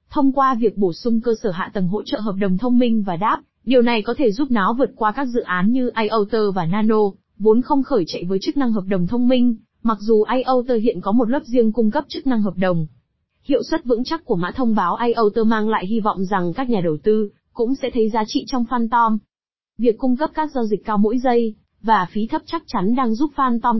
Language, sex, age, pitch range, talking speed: Vietnamese, female, 20-39, 205-255 Hz, 250 wpm